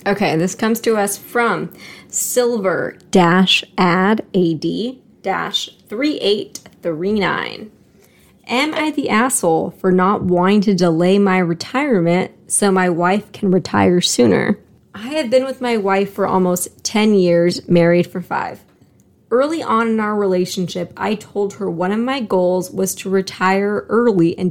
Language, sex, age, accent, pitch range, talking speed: English, female, 20-39, American, 180-225 Hz, 130 wpm